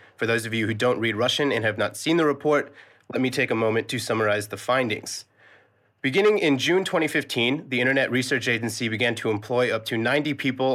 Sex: male